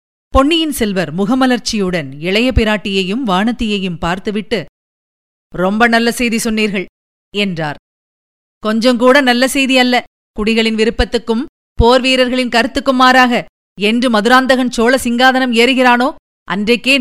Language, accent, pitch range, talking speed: Tamil, native, 200-245 Hz, 95 wpm